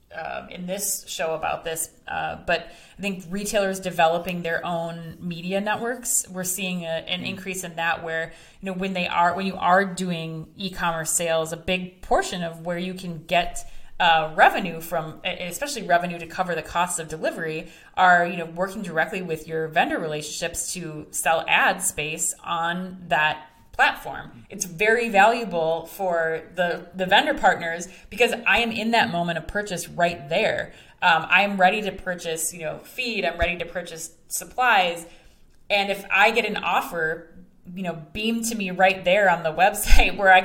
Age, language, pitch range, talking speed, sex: 30-49, English, 165-195 Hz, 175 wpm, female